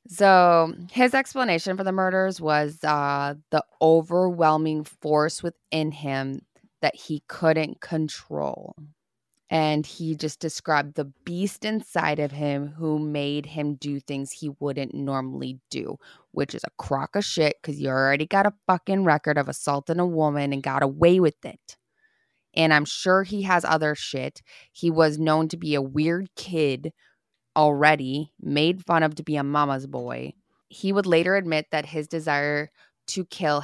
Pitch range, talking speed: 140-165 Hz, 160 wpm